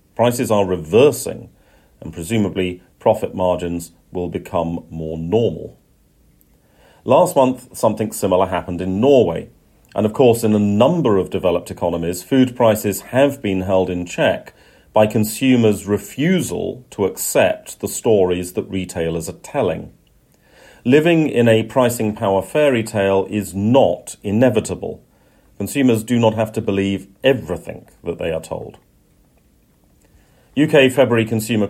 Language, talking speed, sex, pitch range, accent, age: English, 130 wpm, male, 90-120 Hz, British, 40-59